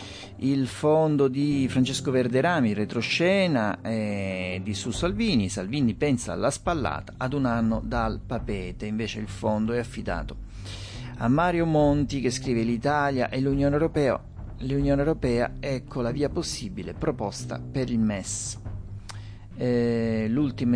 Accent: native